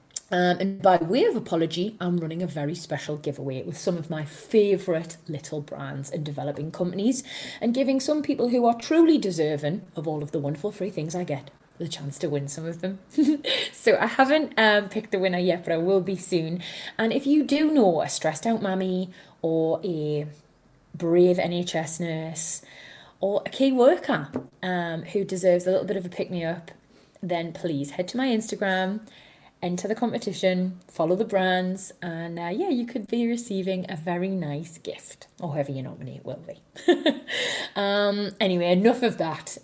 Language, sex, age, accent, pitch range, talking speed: English, female, 30-49, British, 165-225 Hz, 185 wpm